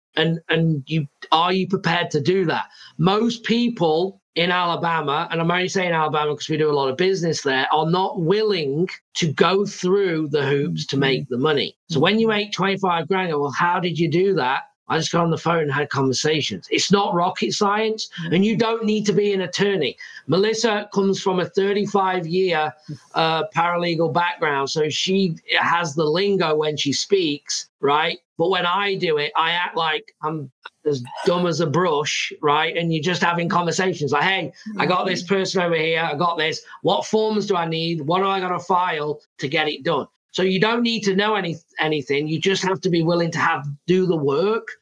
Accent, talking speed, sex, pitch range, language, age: British, 205 wpm, male, 155-195 Hz, English, 40-59